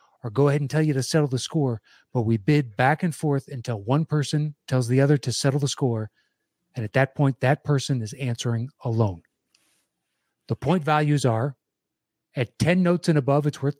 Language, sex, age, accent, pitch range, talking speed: English, male, 30-49, American, 120-155 Hz, 200 wpm